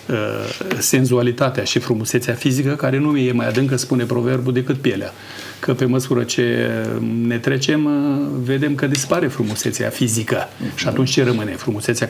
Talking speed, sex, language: 145 wpm, male, Romanian